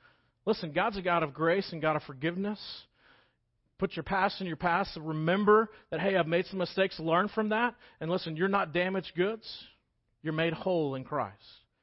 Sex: male